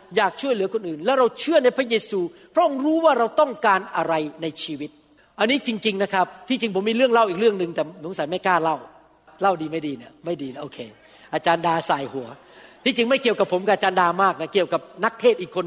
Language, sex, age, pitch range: Thai, male, 60-79, 175-245 Hz